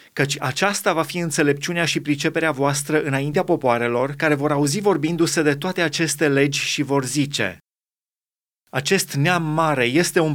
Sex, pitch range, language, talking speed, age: male, 145-175 Hz, Romanian, 150 wpm, 30-49